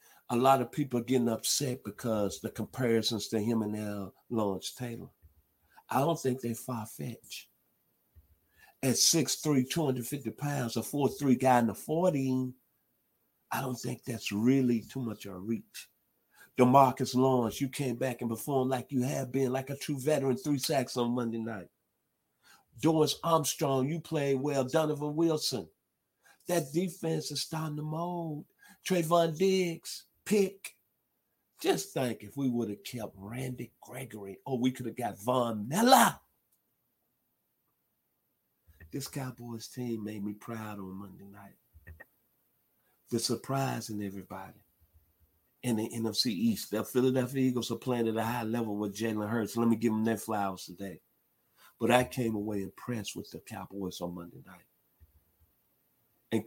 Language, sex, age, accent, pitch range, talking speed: English, male, 50-69, American, 105-135 Hz, 150 wpm